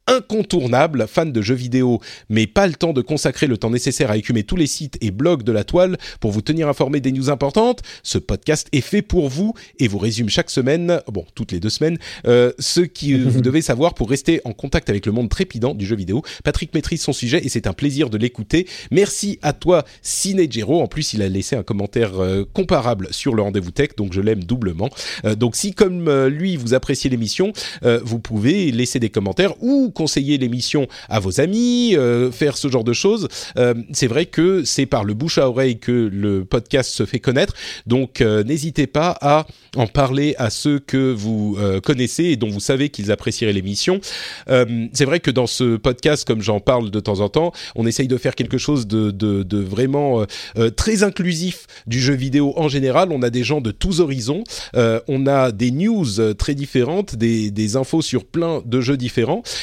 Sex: male